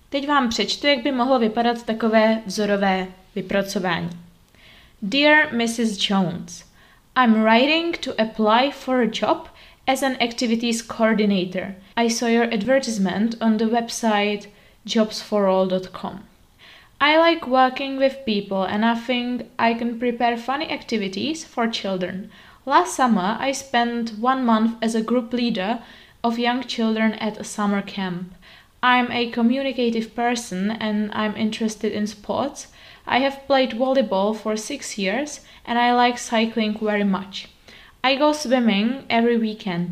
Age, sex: 20-39, female